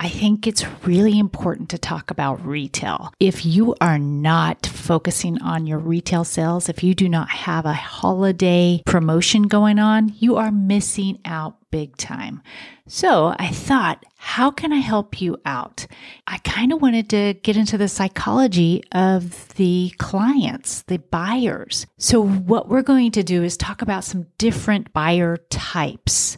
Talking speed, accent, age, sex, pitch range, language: 160 wpm, American, 40-59, female, 160-210 Hz, English